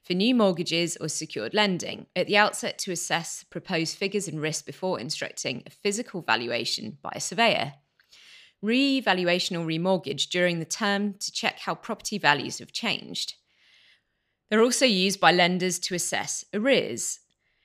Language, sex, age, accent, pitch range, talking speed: English, female, 30-49, British, 160-200 Hz, 150 wpm